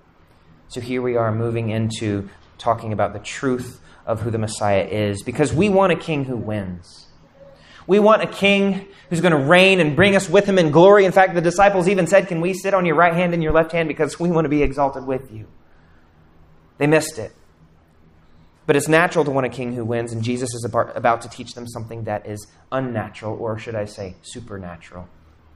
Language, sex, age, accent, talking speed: English, male, 30-49, American, 210 wpm